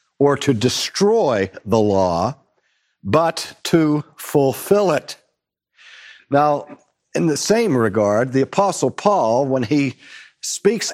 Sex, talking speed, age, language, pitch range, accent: male, 110 wpm, 60-79, English, 140-185 Hz, American